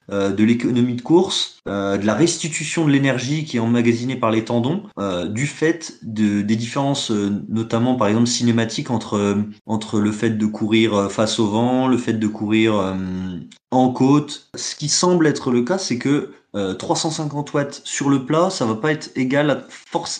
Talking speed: 195 wpm